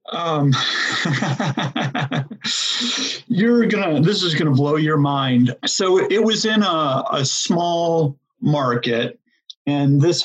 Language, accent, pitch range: English, American, 130-160 Hz